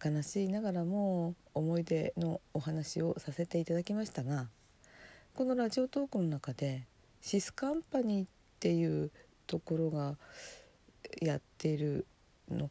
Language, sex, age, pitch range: Japanese, female, 50-69, 145-185 Hz